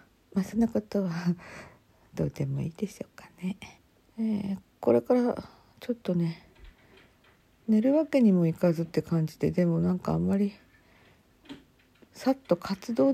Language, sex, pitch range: Japanese, female, 150-220 Hz